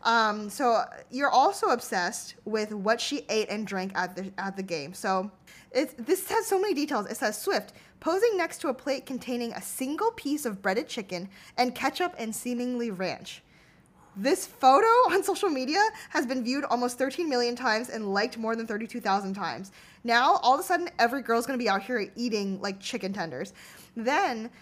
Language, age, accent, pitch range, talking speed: English, 10-29, American, 205-270 Hz, 190 wpm